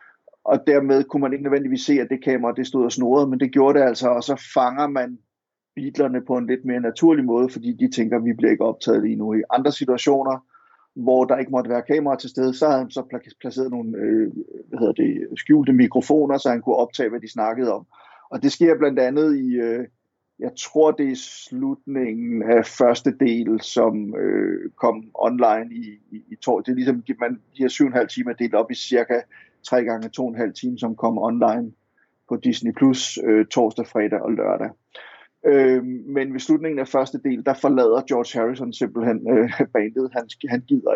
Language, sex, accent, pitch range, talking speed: Danish, male, native, 115-145 Hz, 195 wpm